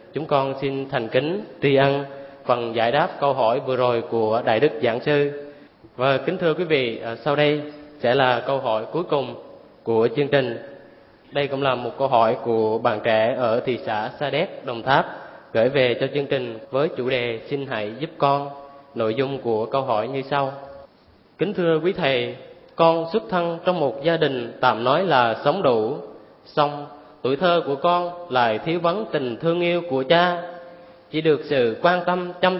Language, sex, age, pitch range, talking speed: Vietnamese, male, 20-39, 125-170 Hz, 195 wpm